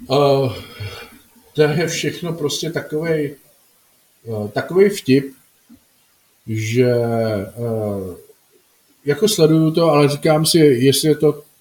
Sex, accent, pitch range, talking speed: male, native, 130-155 Hz, 105 wpm